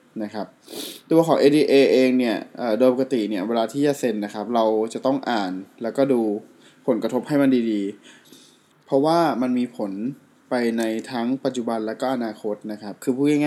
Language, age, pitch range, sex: Thai, 20-39, 110-140 Hz, male